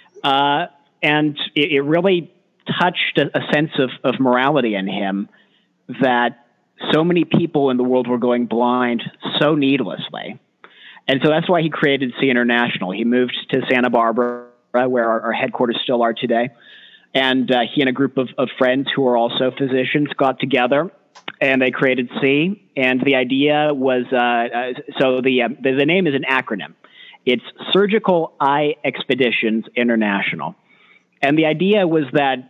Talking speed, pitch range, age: 165 wpm, 120-145 Hz, 40-59